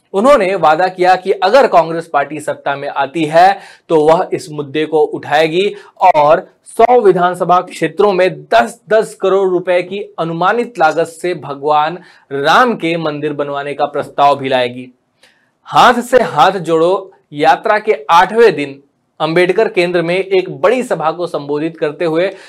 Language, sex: Hindi, male